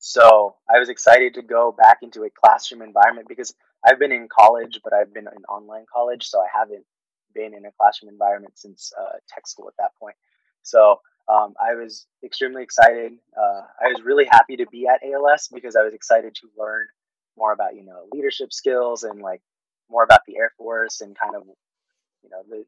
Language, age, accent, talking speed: English, 20-39, American, 205 wpm